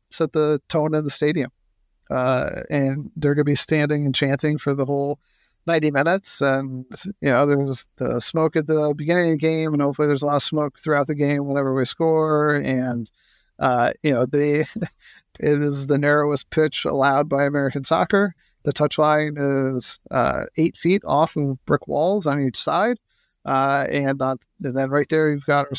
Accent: American